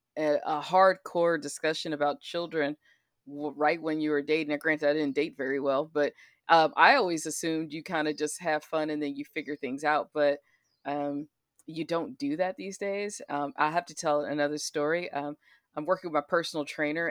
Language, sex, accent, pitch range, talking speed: English, female, American, 150-195 Hz, 195 wpm